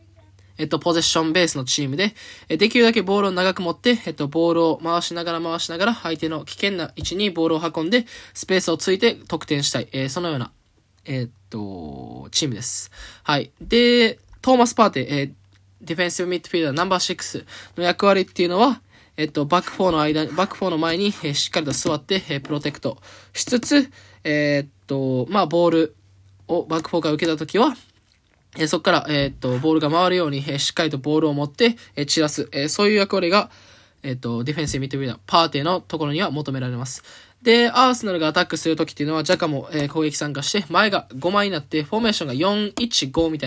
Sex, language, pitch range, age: male, Japanese, 140-185 Hz, 10-29